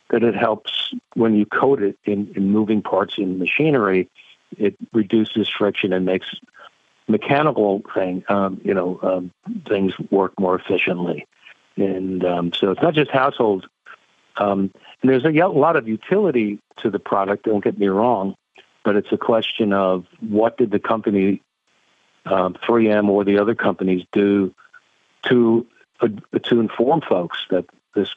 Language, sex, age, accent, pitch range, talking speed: English, male, 50-69, American, 95-110 Hz, 150 wpm